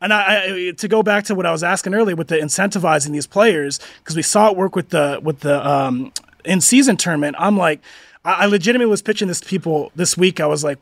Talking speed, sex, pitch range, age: 240 wpm, male, 160-215 Hz, 30-49